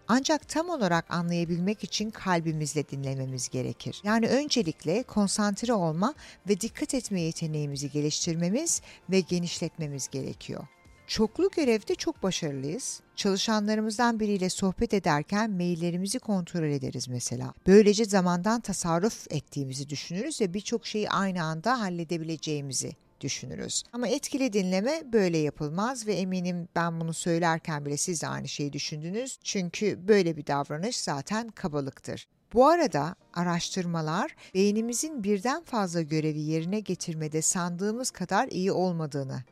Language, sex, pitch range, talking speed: Turkish, female, 155-215 Hz, 120 wpm